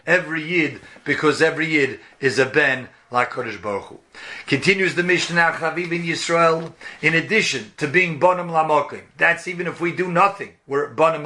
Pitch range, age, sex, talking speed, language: 150-180 Hz, 50-69, male, 170 wpm, English